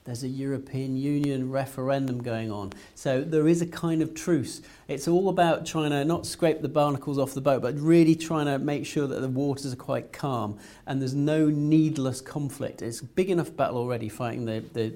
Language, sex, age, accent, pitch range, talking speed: English, male, 40-59, British, 115-155 Hz, 210 wpm